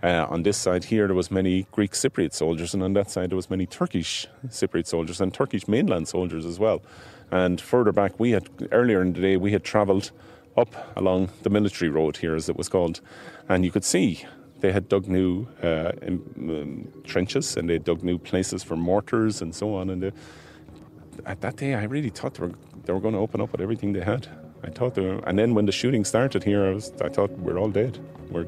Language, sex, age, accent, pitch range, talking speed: English, male, 30-49, Irish, 90-110 Hz, 230 wpm